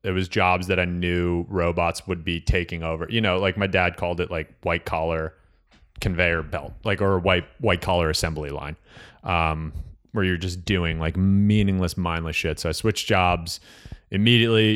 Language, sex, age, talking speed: English, male, 30-49, 180 wpm